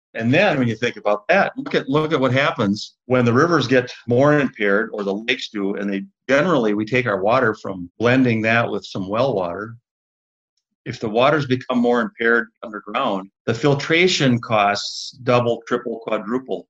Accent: American